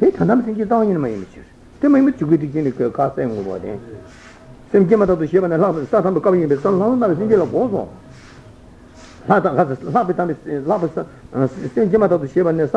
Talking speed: 160 wpm